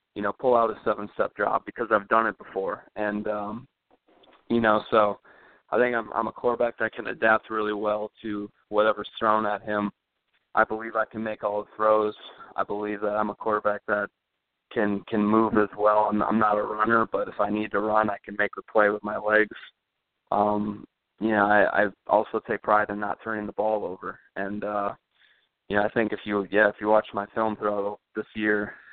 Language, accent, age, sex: English, American, 20-39, male